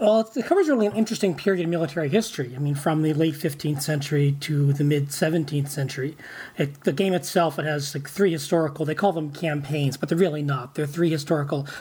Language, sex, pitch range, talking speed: English, male, 145-175 Hz, 200 wpm